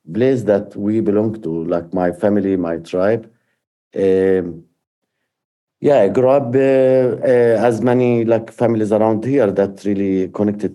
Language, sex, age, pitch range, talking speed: English, male, 50-69, 90-110 Hz, 145 wpm